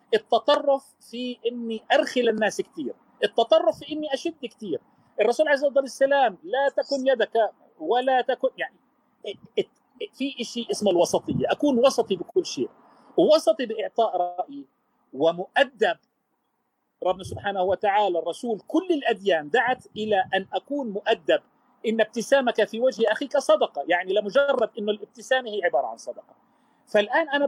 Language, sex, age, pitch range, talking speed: Arabic, male, 40-59, 220-285 Hz, 130 wpm